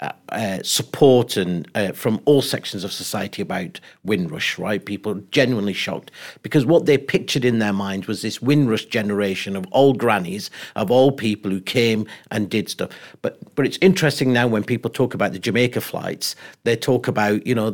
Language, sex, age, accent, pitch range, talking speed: English, male, 50-69, British, 105-130 Hz, 185 wpm